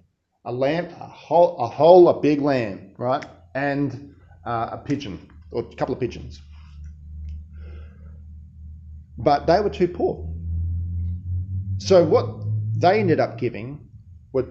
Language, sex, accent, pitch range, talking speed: English, male, Australian, 110-150 Hz, 125 wpm